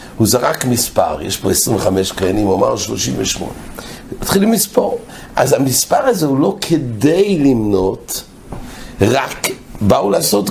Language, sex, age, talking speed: English, male, 60-79, 125 wpm